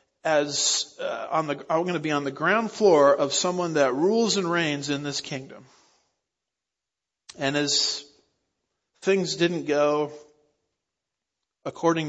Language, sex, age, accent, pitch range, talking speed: English, male, 50-69, American, 135-160 Hz, 120 wpm